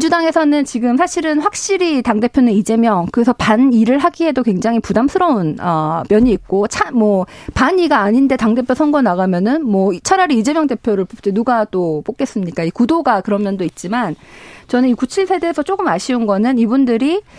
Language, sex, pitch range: Korean, female, 200-275 Hz